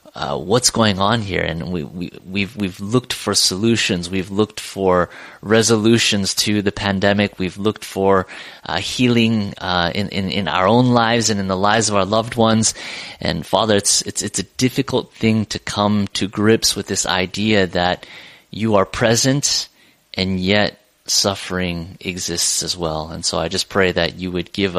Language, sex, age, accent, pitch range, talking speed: English, male, 30-49, American, 90-110 Hz, 180 wpm